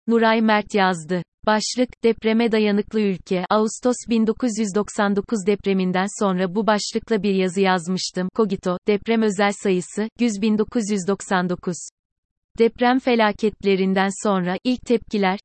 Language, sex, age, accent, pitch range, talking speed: Turkish, female, 30-49, native, 190-220 Hz, 105 wpm